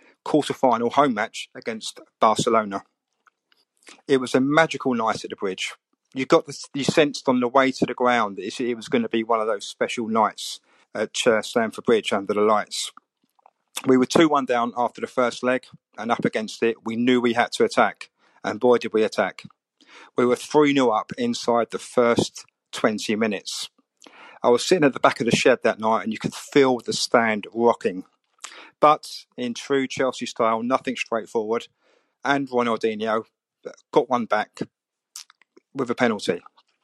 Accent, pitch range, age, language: British, 115-135 Hz, 50-69, English